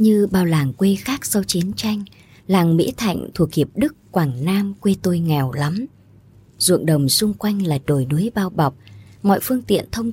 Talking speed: 195 wpm